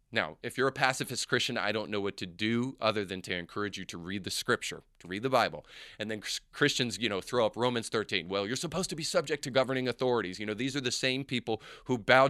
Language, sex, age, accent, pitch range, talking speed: English, male, 30-49, American, 105-135 Hz, 255 wpm